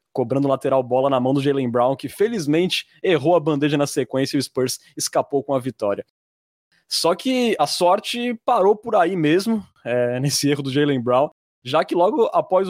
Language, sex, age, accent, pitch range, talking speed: Portuguese, male, 20-39, Brazilian, 135-175 Hz, 190 wpm